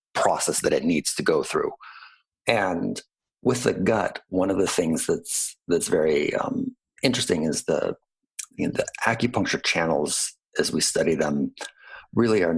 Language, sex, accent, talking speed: English, male, American, 155 wpm